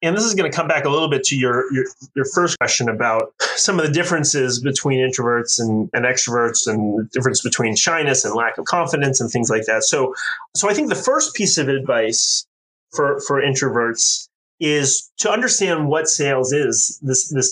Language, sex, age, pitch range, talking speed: English, male, 30-49, 120-160 Hz, 200 wpm